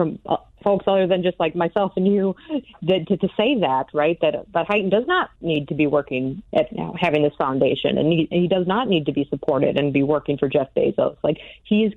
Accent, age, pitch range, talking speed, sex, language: American, 40-59, 150-185 Hz, 250 wpm, female, English